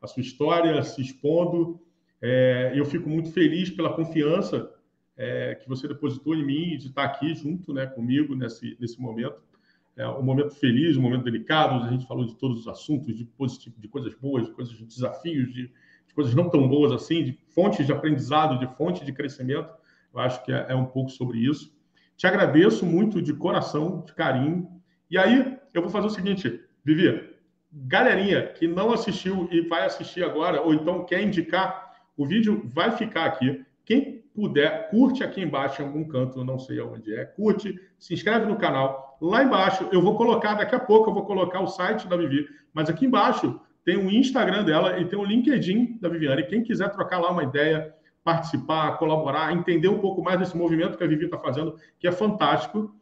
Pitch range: 140-190 Hz